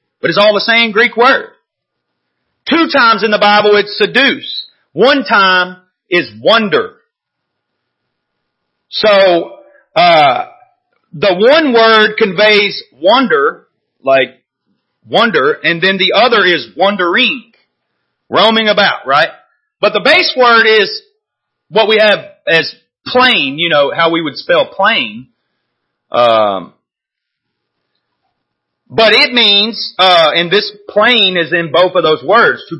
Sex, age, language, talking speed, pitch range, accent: male, 40-59, English, 125 wpm, 170-250 Hz, American